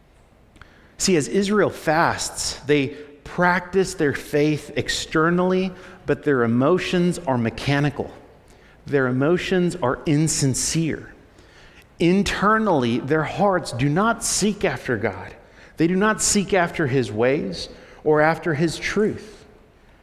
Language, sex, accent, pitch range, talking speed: English, male, American, 145-210 Hz, 110 wpm